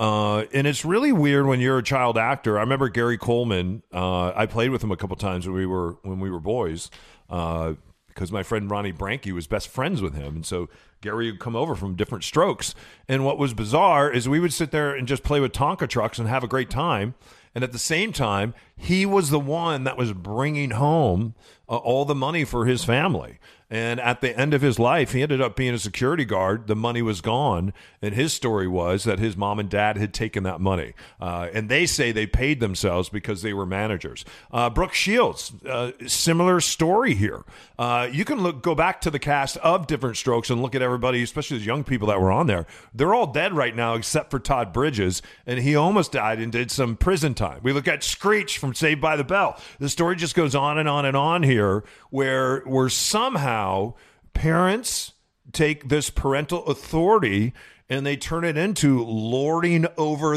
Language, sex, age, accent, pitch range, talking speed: English, male, 40-59, American, 105-145 Hz, 215 wpm